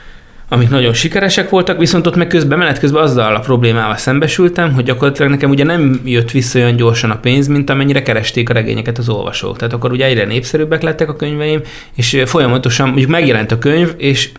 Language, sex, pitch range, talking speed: Hungarian, male, 110-135 Hz, 190 wpm